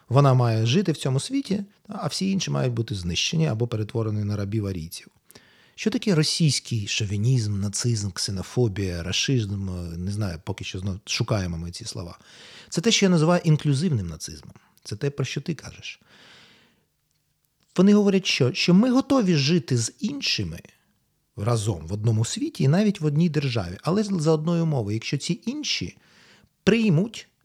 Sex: male